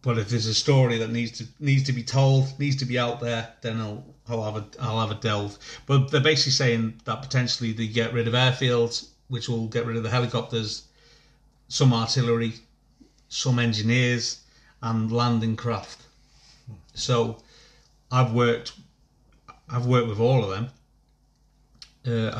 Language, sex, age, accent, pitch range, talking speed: English, male, 40-59, British, 115-130 Hz, 165 wpm